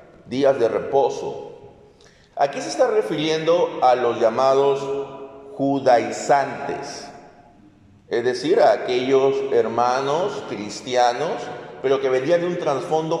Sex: male